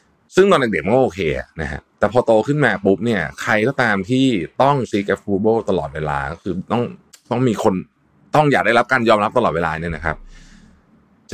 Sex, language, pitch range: male, Thai, 80-115 Hz